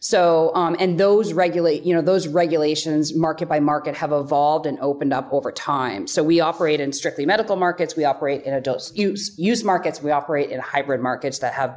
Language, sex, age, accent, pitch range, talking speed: English, female, 30-49, American, 150-180 Hz, 205 wpm